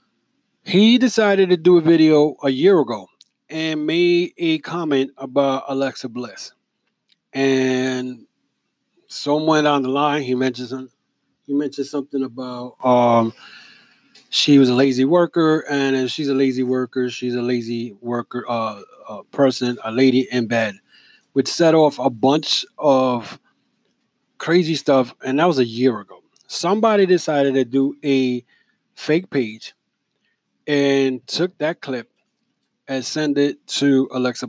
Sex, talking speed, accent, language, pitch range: male, 140 wpm, American, English, 125-150 Hz